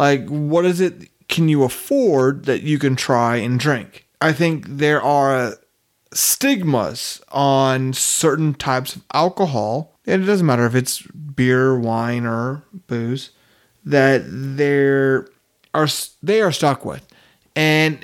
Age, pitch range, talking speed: 30-49, 130-165 Hz, 135 wpm